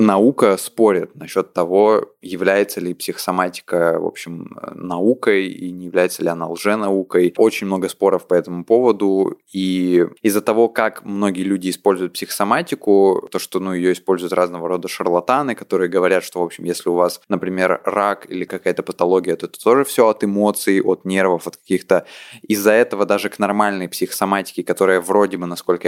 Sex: male